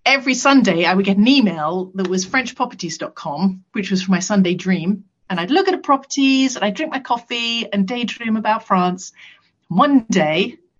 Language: English